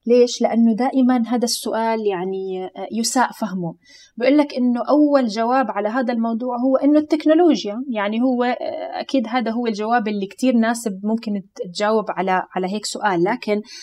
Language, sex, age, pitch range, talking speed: Arabic, female, 20-39, 210-275 Hz, 150 wpm